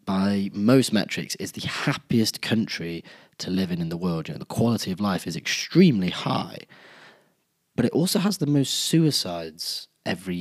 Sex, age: male, 20-39